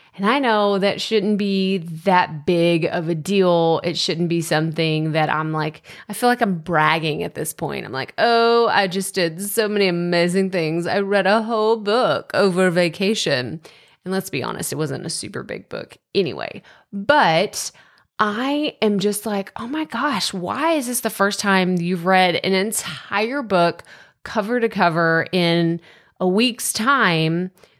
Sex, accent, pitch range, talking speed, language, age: female, American, 170-230 Hz, 175 wpm, English, 30-49